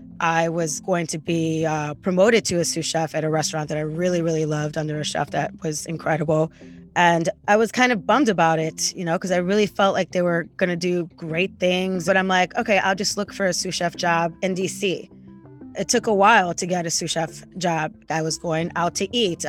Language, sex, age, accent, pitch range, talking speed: English, female, 20-39, American, 160-190 Hz, 235 wpm